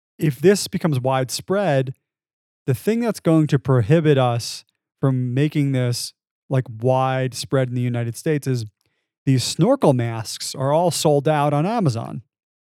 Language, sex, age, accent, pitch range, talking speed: English, male, 30-49, American, 125-155 Hz, 140 wpm